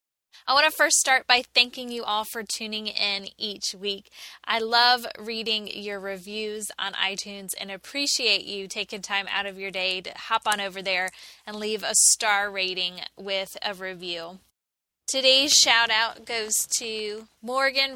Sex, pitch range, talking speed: female, 195-240 Hz, 165 wpm